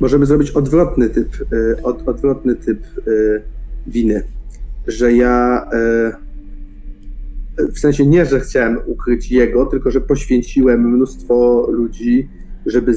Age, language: 40-59, Polish